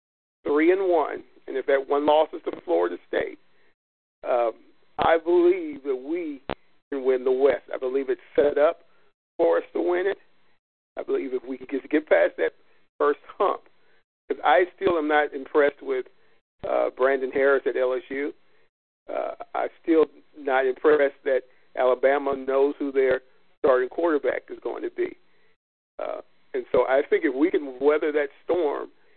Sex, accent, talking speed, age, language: male, American, 165 wpm, 50-69, English